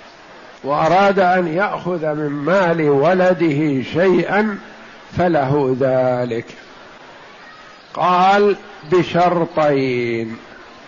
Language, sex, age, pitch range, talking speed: Arabic, male, 50-69, 150-190 Hz, 60 wpm